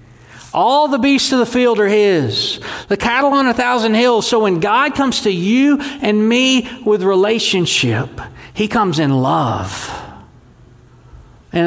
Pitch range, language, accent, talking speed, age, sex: 140-210 Hz, English, American, 150 wpm, 40-59, male